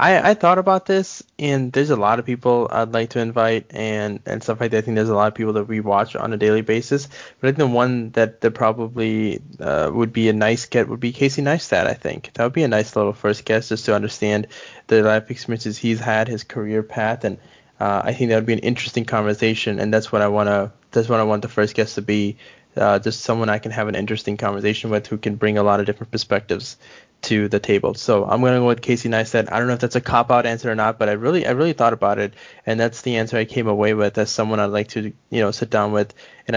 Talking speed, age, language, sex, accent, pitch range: 260 wpm, 20-39, English, male, American, 110-120 Hz